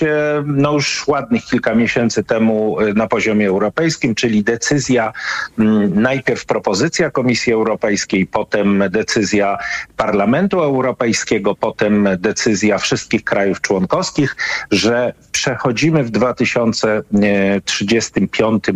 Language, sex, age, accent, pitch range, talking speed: Polish, male, 50-69, native, 110-145 Hz, 90 wpm